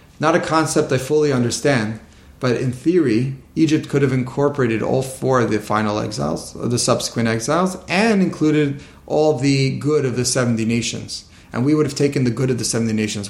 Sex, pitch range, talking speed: male, 115-150 Hz, 190 wpm